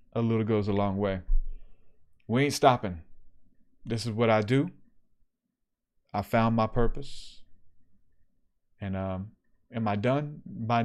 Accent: American